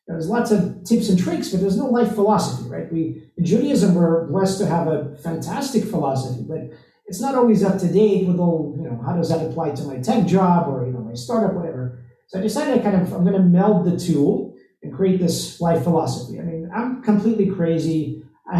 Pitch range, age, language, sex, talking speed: 165-215 Hz, 50-69, English, male, 225 wpm